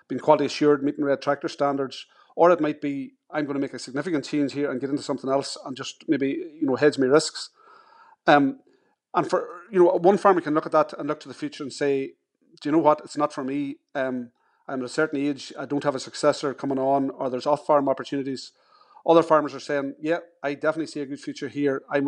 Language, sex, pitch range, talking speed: English, male, 140-160 Hz, 240 wpm